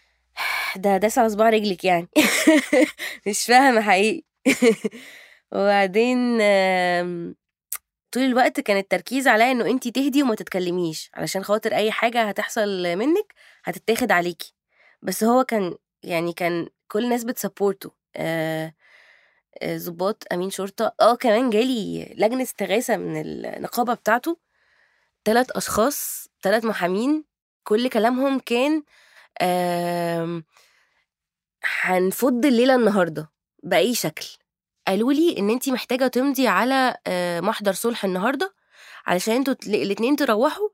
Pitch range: 185-245 Hz